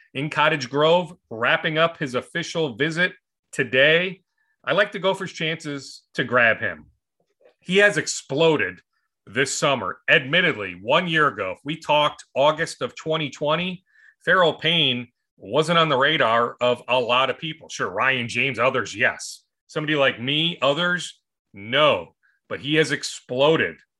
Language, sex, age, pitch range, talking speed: English, male, 30-49, 130-180 Hz, 150 wpm